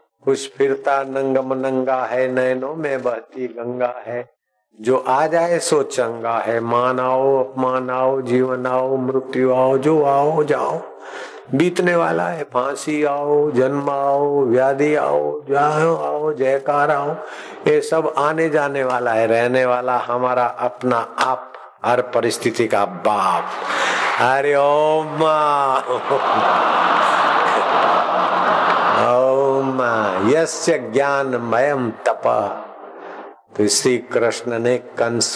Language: Hindi